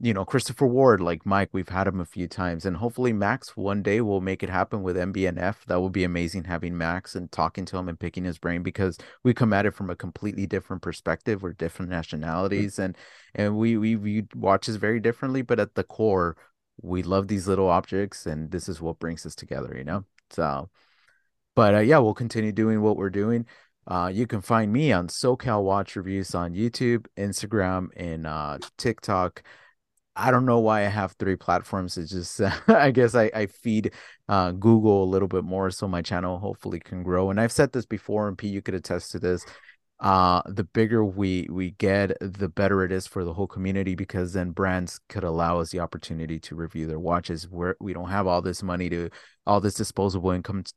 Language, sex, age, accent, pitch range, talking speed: English, male, 30-49, American, 90-105 Hz, 215 wpm